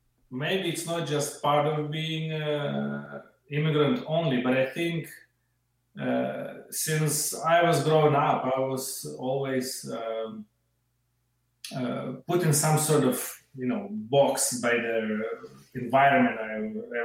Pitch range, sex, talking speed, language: 120-150 Hz, male, 130 wpm, Bulgarian